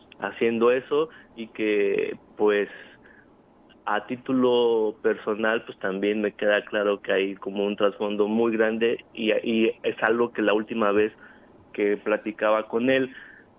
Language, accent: Spanish, Mexican